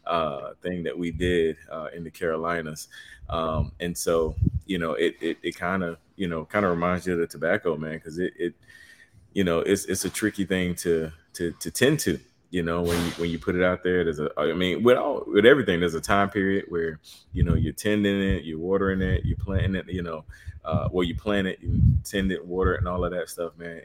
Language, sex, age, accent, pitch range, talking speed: English, male, 30-49, American, 85-95 Hz, 240 wpm